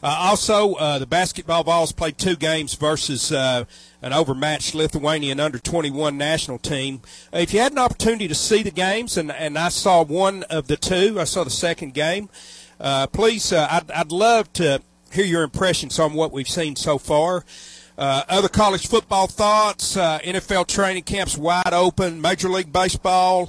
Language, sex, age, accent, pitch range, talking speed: English, male, 40-59, American, 140-185 Hz, 180 wpm